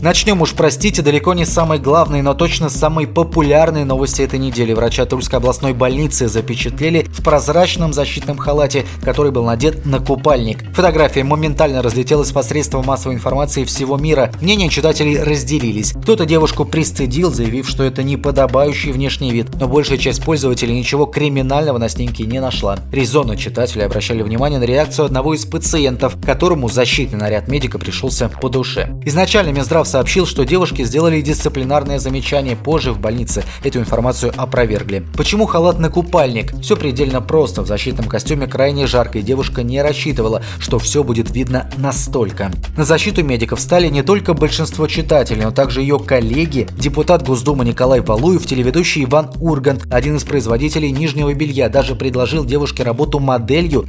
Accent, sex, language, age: native, male, Russian, 20-39